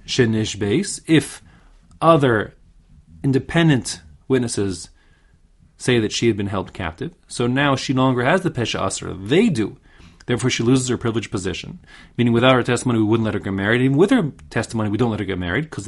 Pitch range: 100-135 Hz